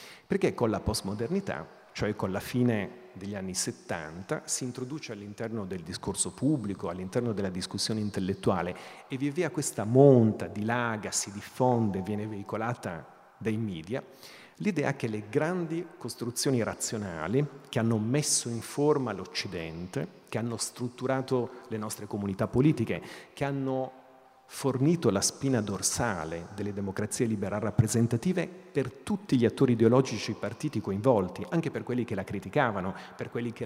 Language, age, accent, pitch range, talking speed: Italian, 40-59, native, 105-135 Hz, 140 wpm